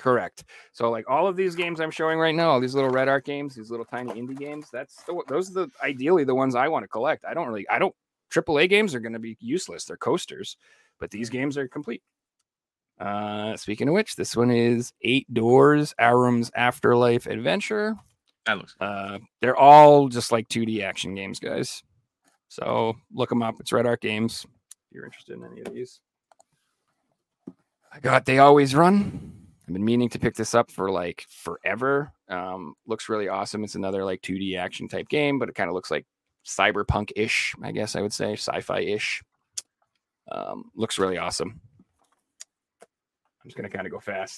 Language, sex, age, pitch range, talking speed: English, male, 30-49, 105-150 Hz, 190 wpm